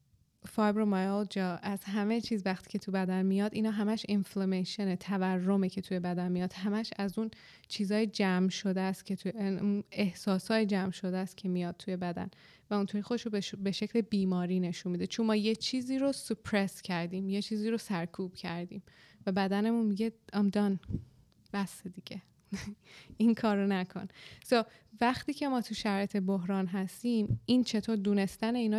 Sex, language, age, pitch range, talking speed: female, Persian, 20-39, 185-215 Hz, 165 wpm